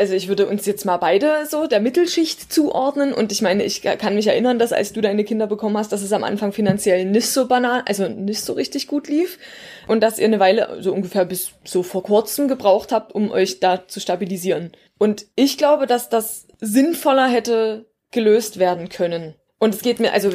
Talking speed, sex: 215 wpm, female